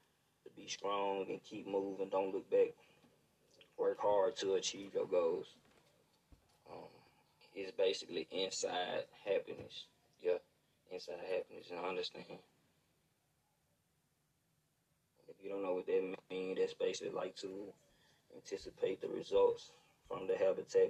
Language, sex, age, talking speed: English, male, 20-39, 120 wpm